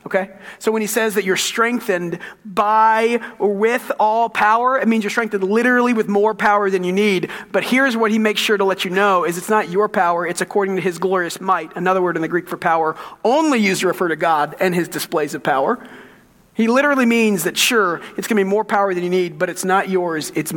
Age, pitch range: 40-59, 165-210 Hz